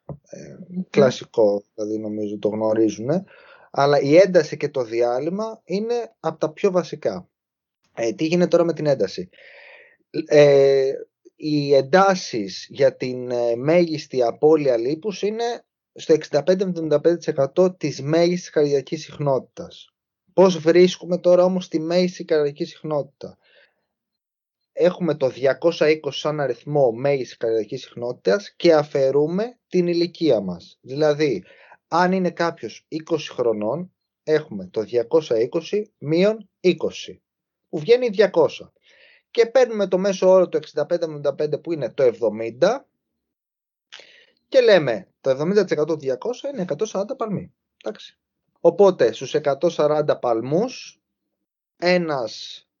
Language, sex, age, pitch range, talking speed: Greek, male, 30-49, 140-185 Hz, 115 wpm